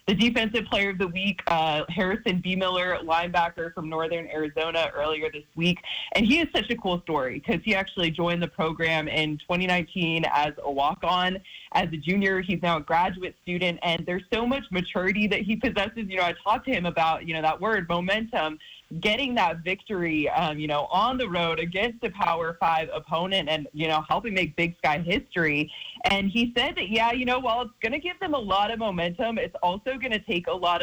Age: 20-39